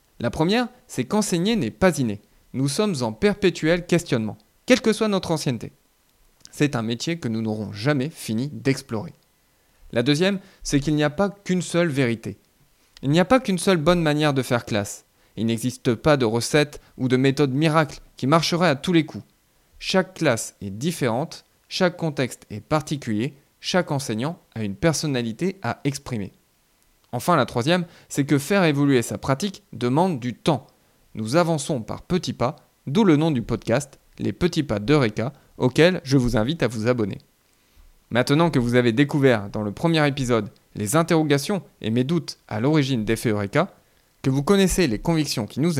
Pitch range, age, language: 115-170 Hz, 20-39, French